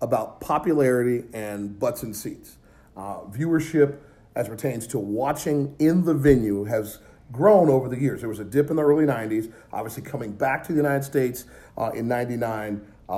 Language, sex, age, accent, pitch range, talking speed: English, male, 40-59, American, 105-140 Hz, 180 wpm